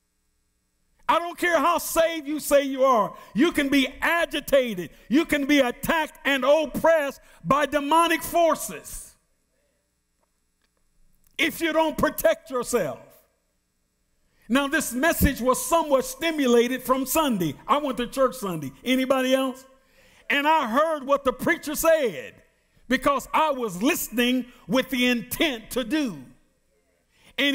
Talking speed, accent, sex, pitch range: 130 wpm, American, male, 245-300 Hz